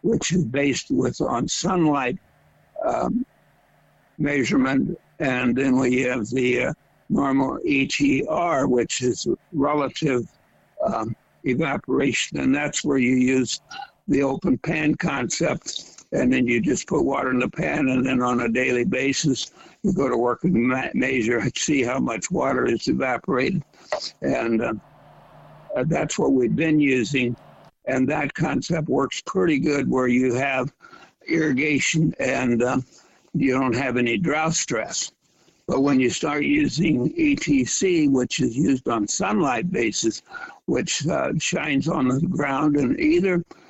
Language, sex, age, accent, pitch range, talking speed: English, male, 60-79, American, 130-160 Hz, 145 wpm